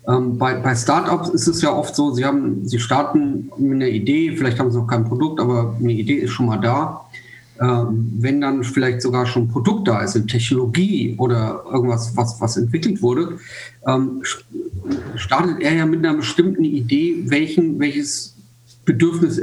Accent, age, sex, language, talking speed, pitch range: German, 50-69, male, German, 180 wpm, 125-165 Hz